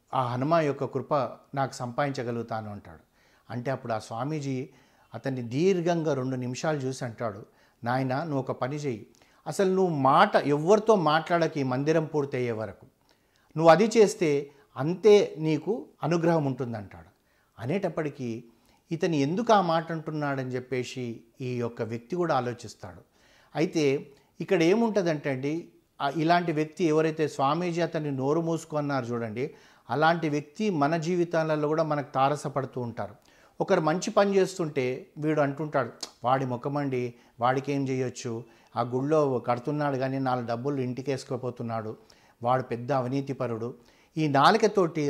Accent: native